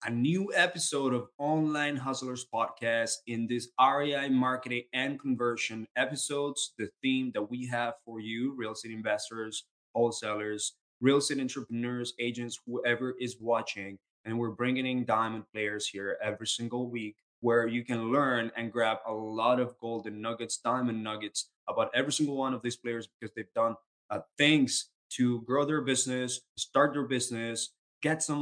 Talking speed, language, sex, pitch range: 160 wpm, English, male, 110-130 Hz